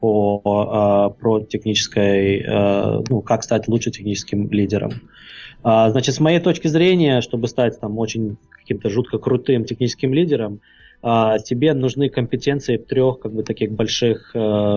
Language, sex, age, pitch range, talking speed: English, male, 20-39, 110-125 Hz, 130 wpm